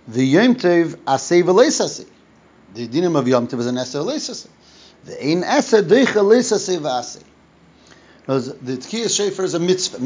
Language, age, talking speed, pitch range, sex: English, 30-49, 160 wpm, 130-185 Hz, male